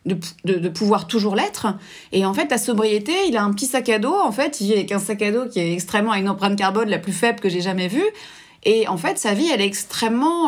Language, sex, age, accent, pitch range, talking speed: French, female, 30-49, French, 195-245 Hz, 280 wpm